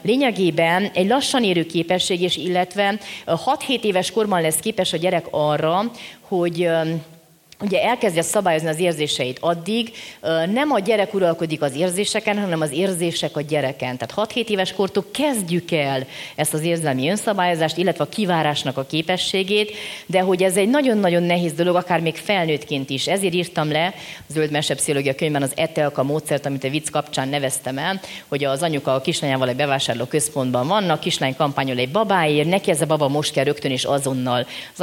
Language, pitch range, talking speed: Hungarian, 145-195 Hz, 170 wpm